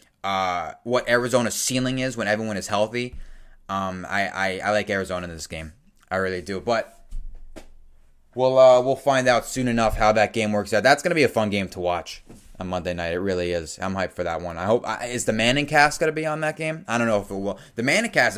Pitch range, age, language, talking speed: 95-125 Hz, 20-39, English, 240 wpm